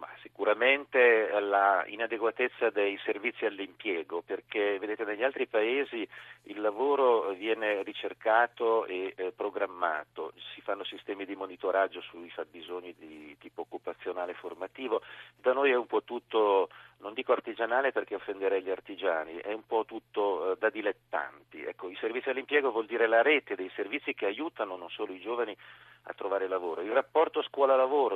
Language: Italian